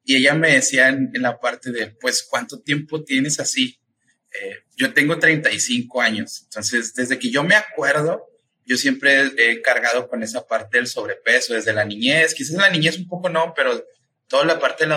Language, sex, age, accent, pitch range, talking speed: Spanish, male, 30-49, Mexican, 125-175 Hz, 200 wpm